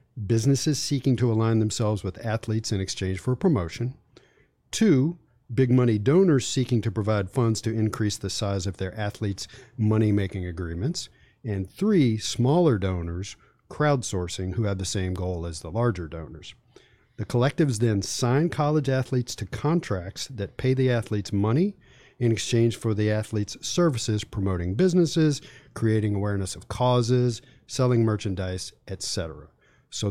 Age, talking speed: 40-59, 145 wpm